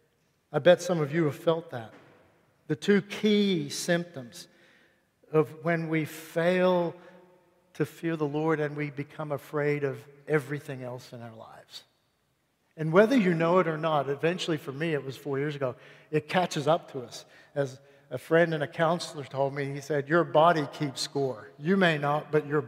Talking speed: 185 wpm